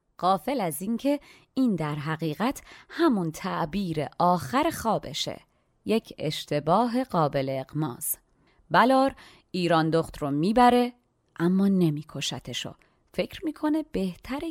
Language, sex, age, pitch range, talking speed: Persian, female, 30-49, 150-210 Hz, 100 wpm